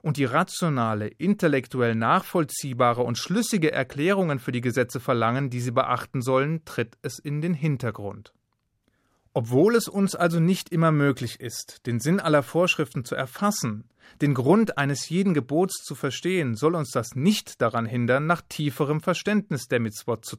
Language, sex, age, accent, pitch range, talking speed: German, male, 30-49, German, 125-170 Hz, 160 wpm